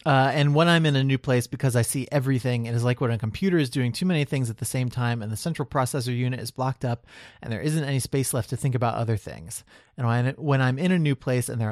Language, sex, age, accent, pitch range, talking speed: English, male, 30-49, American, 120-150 Hz, 280 wpm